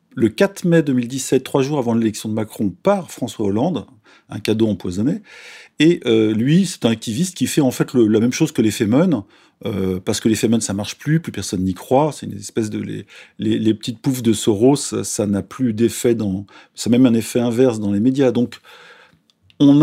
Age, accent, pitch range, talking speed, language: 40-59, French, 110-150 Hz, 220 wpm, French